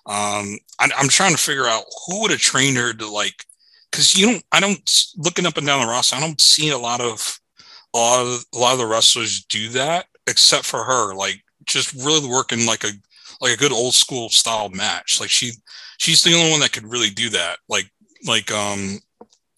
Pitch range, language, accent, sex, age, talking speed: 115-145 Hz, English, American, male, 30-49, 220 wpm